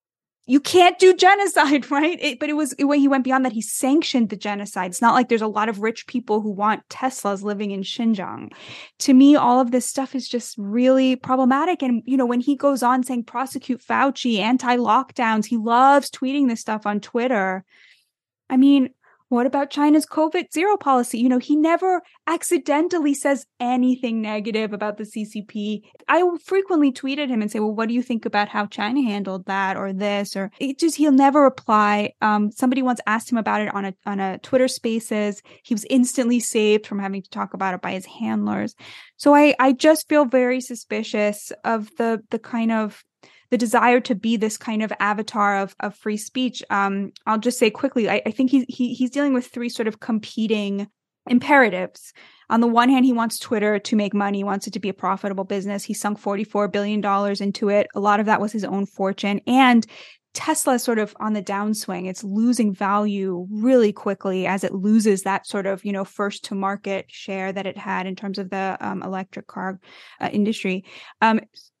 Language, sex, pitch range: English, female, 205-260 Hz